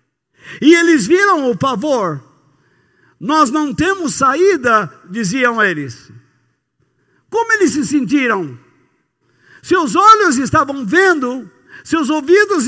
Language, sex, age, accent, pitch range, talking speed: Portuguese, male, 60-79, Brazilian, 215-325 Hz, 100 wpm